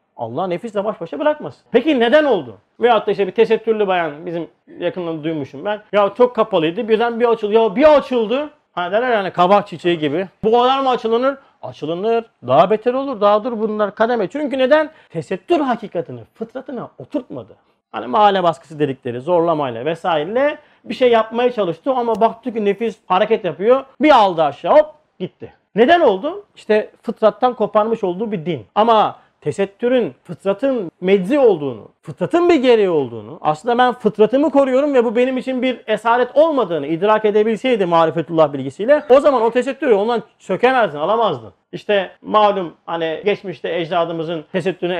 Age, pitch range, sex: 40-59, 170-245 Hz, male